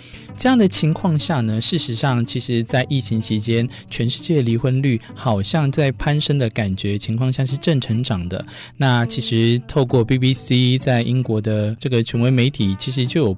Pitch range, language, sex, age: 110-135 Hz, Chinese, male, 20-39